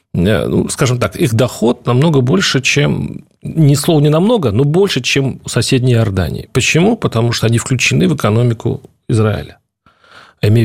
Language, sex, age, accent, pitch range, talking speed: Russian, male, 40-59, native, 105-145 Hz, 140 wpm